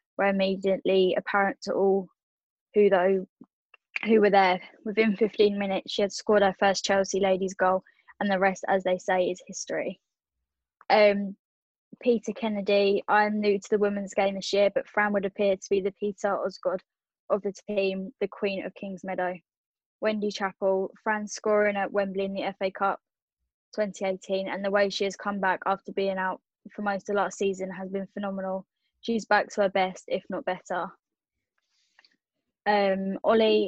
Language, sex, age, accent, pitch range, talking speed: English, female, 10-29, British, 190-210 Hz, 170 wpm